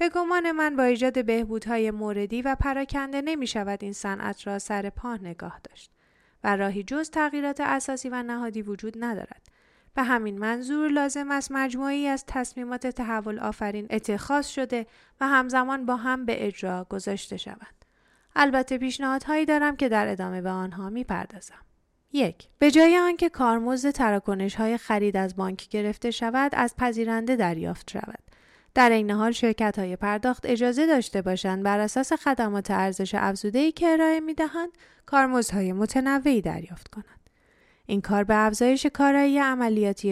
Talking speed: 155 wpm